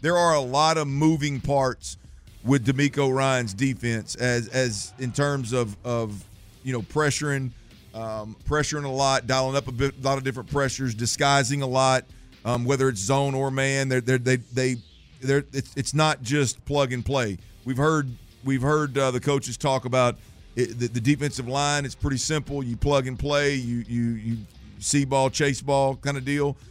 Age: 50-69